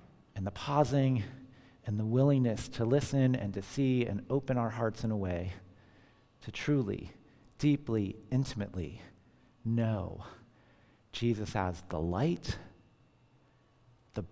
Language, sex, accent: English, male, American